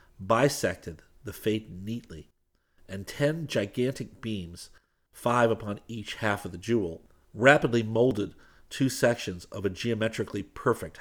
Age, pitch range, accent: 50-69, 95-115 Hz, American